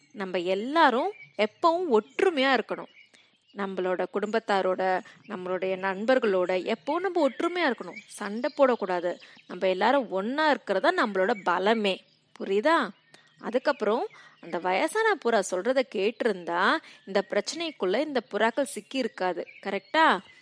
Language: Tamil